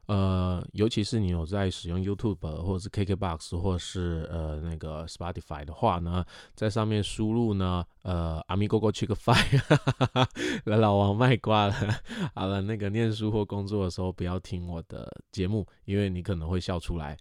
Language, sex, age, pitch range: Chinese, male, 20-39, 85-105 Hz